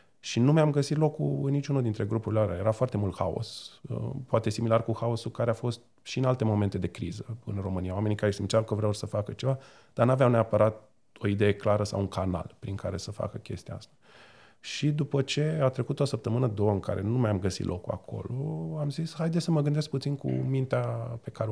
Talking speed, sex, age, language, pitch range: 220 wpm, male, 30-49, Romanian, 100-130 Hz